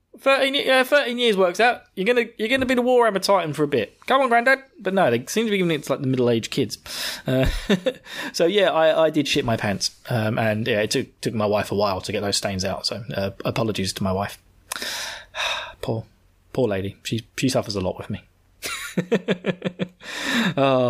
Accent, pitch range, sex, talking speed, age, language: British, 120-190 Hz, male, 220 wpm, 20-39, English